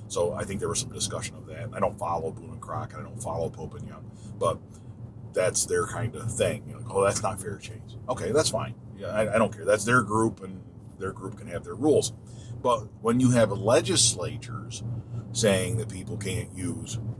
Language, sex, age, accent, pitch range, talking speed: English, male, 40-59, American, 110-140 Hz, 215 wpm